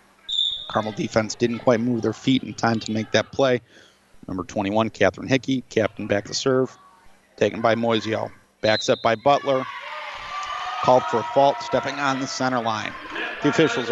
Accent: American